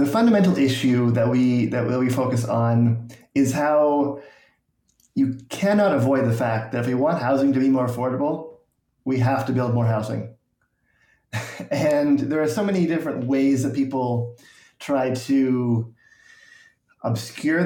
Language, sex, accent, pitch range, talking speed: English, male, American, 120-140 Hz, 145 wpm